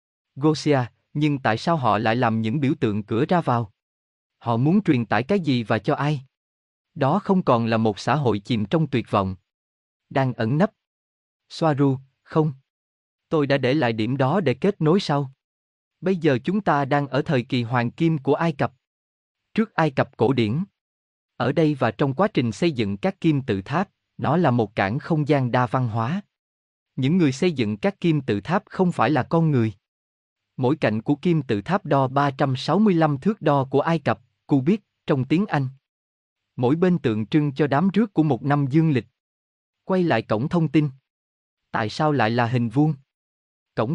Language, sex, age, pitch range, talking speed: Vietnamese, male, 20-39, 110-160 Hz, 195 wpm